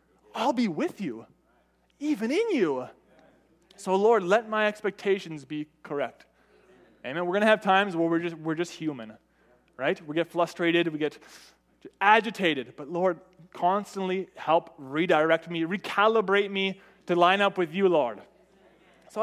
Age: 20-39